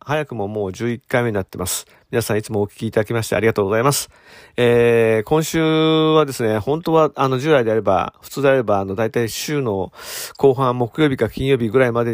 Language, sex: Japanese, male